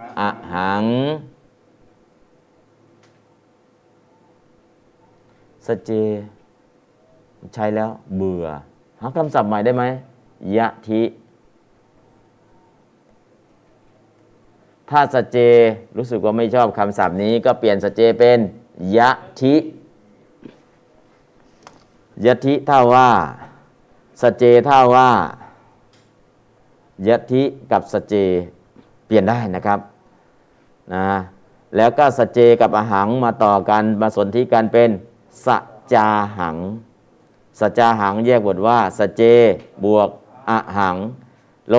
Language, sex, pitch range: Thai, male, 100-120 Hz